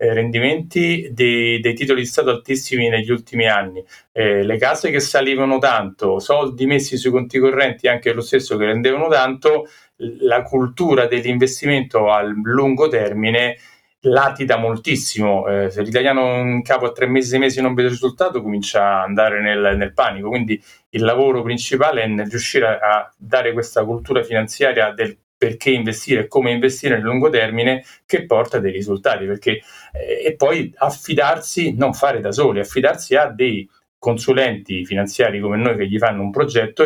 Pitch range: 110-135 Hz